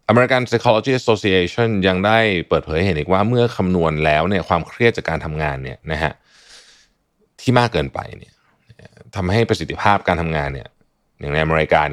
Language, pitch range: Thai, 80-120 Hz